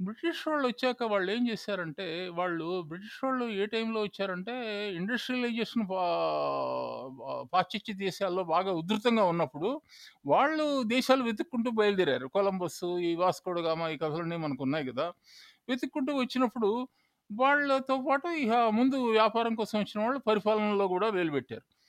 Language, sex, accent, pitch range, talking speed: Telugu, male, native, 180-250 Hz, 120 wpm